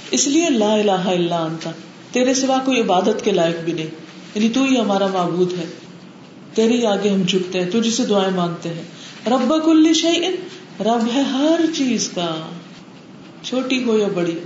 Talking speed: 85 wpm